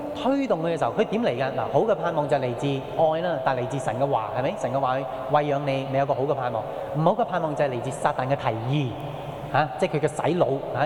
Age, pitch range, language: 20-39, 140-190 Hz, Chinese